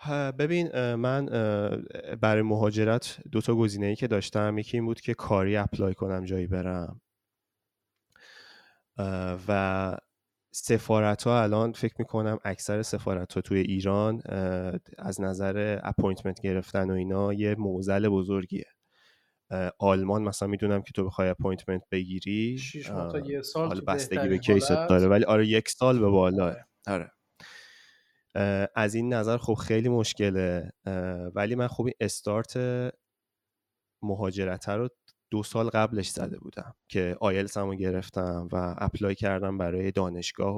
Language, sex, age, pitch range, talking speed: Persian, male, 20-39, 95-110 Hz, 130 wpm